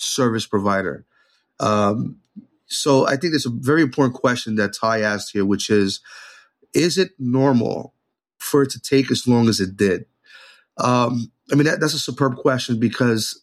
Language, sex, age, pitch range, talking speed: English, male, 30-49, 115-145 Hz, 165 wpm